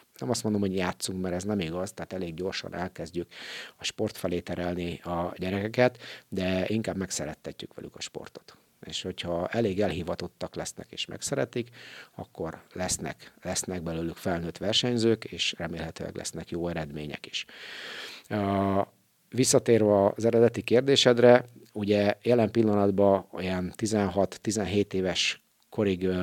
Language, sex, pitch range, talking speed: Hungarian, male, 90-110 Hz, 125 wpm